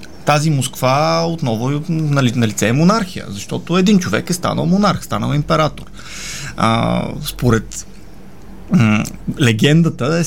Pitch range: 130-180 Hz